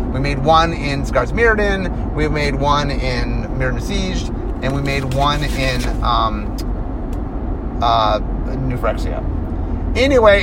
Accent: American